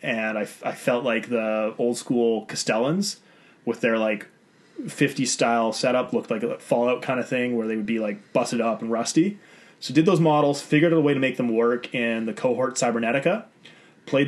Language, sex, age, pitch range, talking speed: English, male, 20-39, 115-145 Hz, 210 wpm